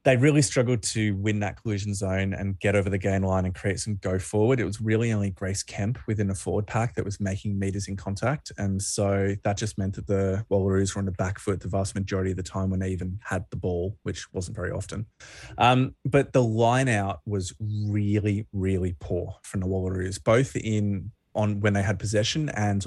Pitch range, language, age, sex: 100-120 Hz, English, 20-39, male